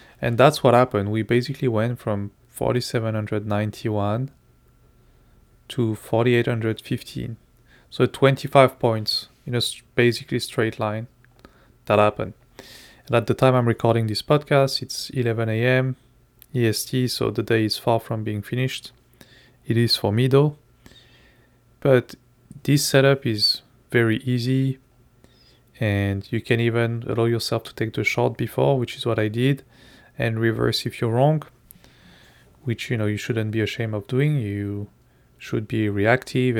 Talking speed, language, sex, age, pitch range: 140 wpm, English, male, 30-49, 110-130 Hz